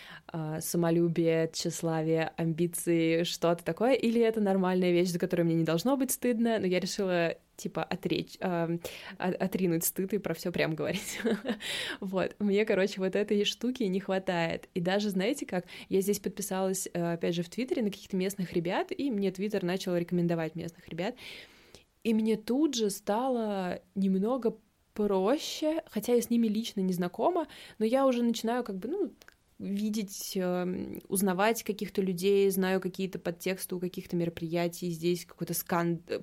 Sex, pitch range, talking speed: female, 175-220 Hz, 150 wpm